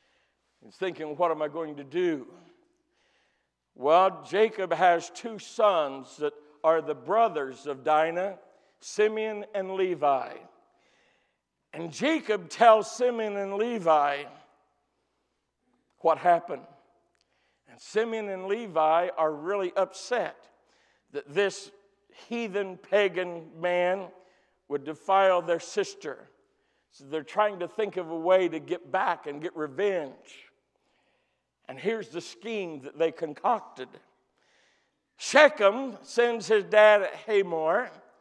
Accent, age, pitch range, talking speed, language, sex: American, 60-79, 175-240 Hz, 115 wpm, English, male